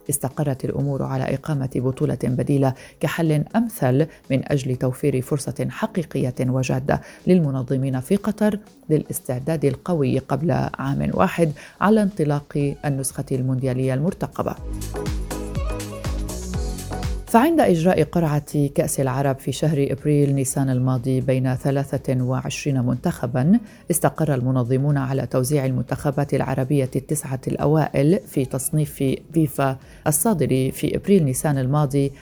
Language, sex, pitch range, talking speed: Arabic, female, 130-155 Hz, 105 wpm